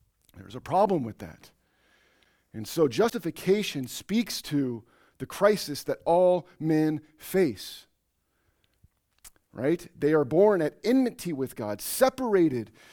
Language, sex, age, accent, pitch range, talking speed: English, male, 40-59, American, 120-175 Hz, 115 wpm